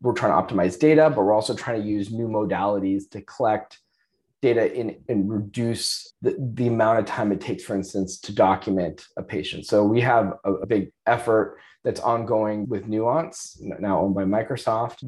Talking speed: 190 wpm